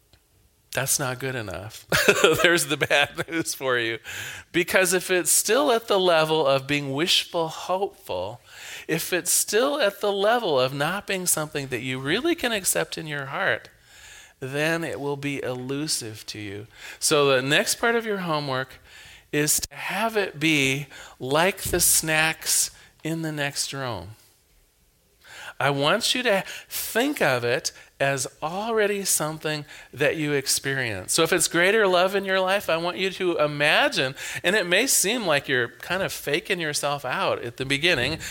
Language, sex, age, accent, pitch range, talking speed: English, male, 40-59, American, 135-185 Hz, 165 wpm